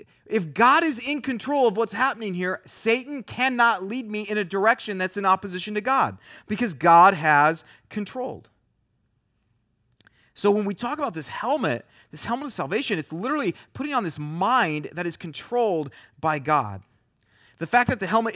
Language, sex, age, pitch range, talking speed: English, male, 30-49, 155-220 Hz, 170 wpm